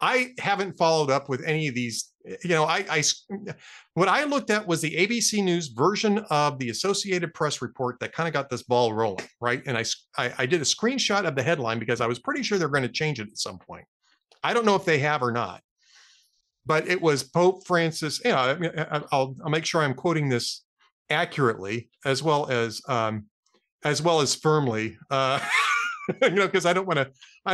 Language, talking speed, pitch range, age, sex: English, 210 wpm, 135-200 Hz, 40-59, male